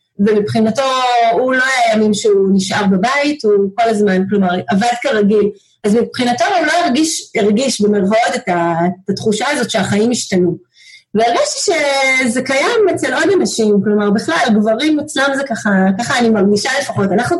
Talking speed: 150 wpm